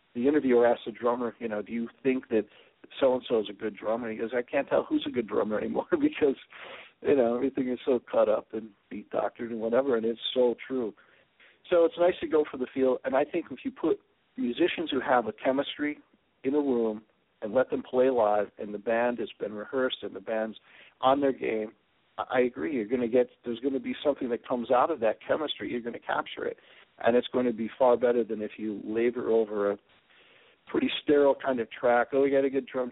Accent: American